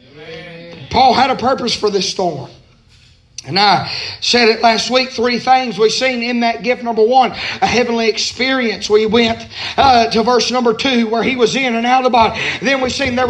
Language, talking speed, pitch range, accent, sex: English, 200 wpm, 245-300 Hz, American, male